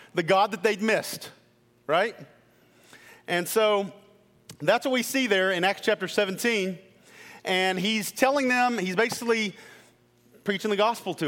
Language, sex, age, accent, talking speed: English, male, 40-59, American, 145 wpm